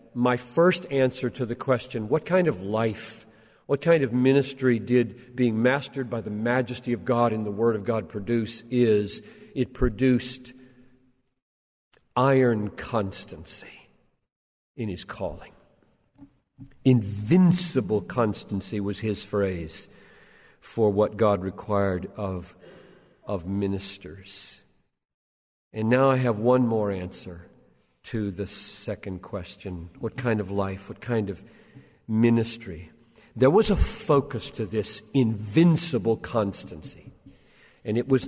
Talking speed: 120 wpm